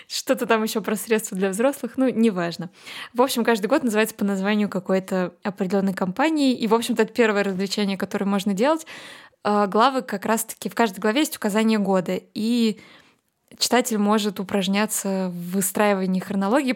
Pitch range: 200-230 Hz